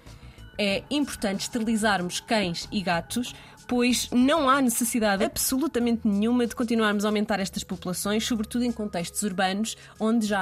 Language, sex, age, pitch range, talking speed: Portuguese, female, 20-39, 185-230 Hz, 140 wpm